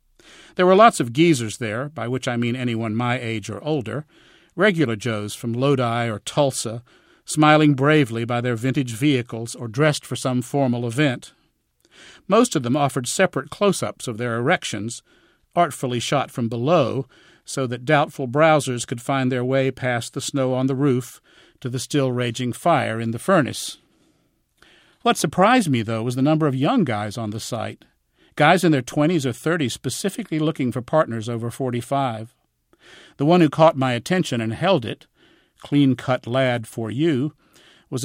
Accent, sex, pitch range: American, male, 120-150 Hz